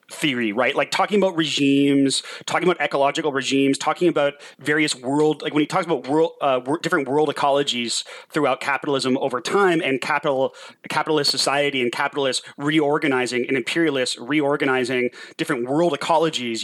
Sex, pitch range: male, 125-155 Hz